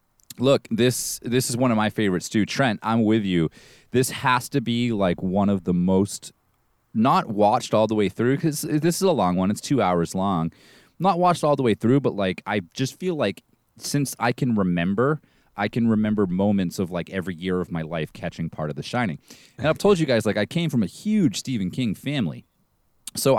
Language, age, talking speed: English, 30-49, 220 wpm